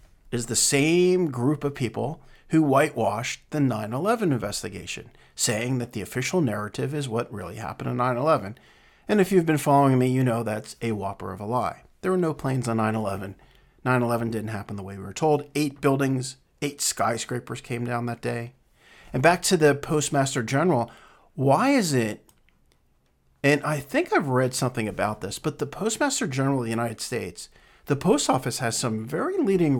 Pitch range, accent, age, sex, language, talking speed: 110-145 Hz, American, 40-59, male, English, 180 wpm